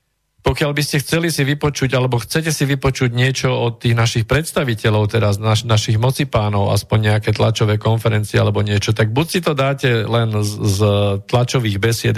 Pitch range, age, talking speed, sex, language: 110-135 Hz, 50-69, 170 wpm, male, Slovak